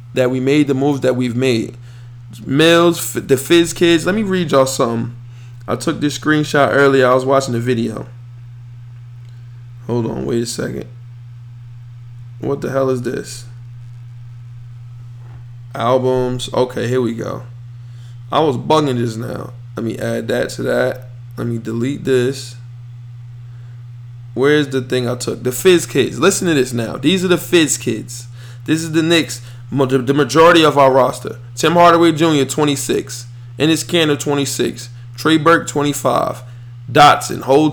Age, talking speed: 20-39, 150 wpm